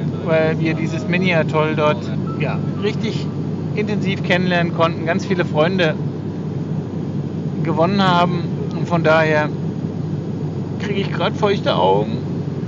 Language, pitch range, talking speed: German, 150-170 Hz, 105 wpm